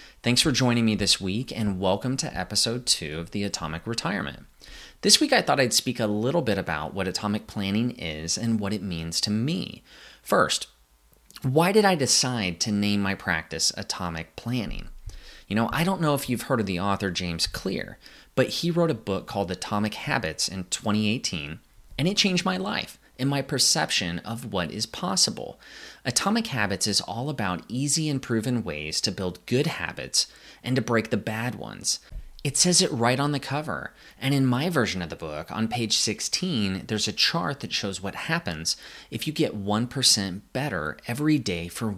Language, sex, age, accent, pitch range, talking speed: English, male, 30-49, American, 95-135 Hz, 190 wpm